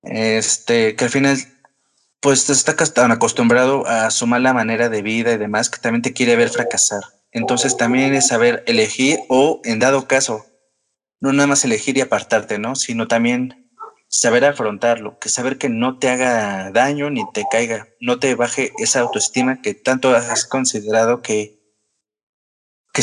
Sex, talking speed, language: male, 165 wpm, Spanish